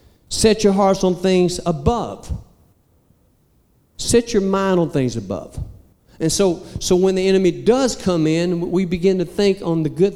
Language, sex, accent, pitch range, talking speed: English, male, American, 145-190 Hz, 165 wpm